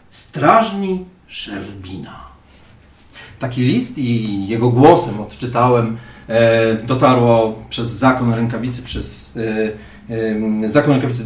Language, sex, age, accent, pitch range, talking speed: Polish, male, 40-59, native, 115-150 Hz, 70 wpm